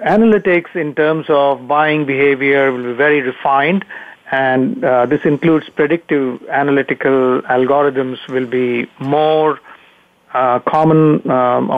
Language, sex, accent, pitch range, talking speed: English, male, Indian, 130-160 Hz, 115 wpm